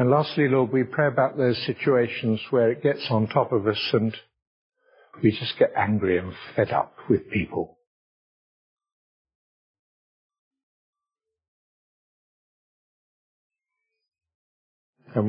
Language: English